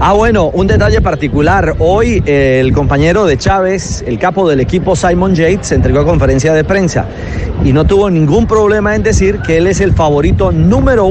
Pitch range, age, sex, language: 120-165 Hz, 40-59, male, Spanish